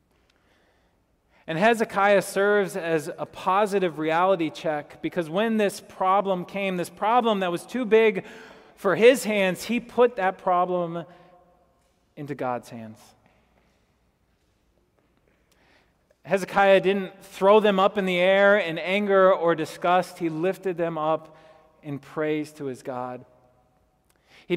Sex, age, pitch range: male, 30-49, 150-190 Hz